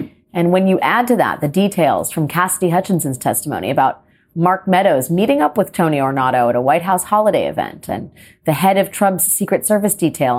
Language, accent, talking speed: English, American, 195 wpm